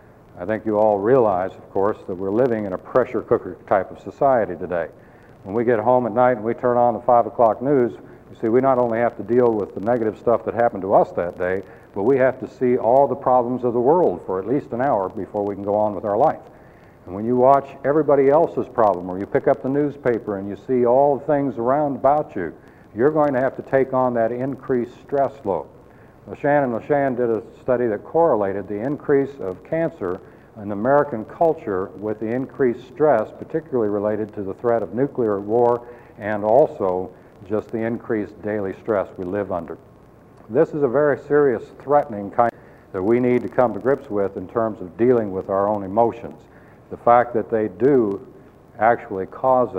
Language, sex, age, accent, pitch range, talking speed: English, male, 60-79, American, 105-130 Hz, 210 wpm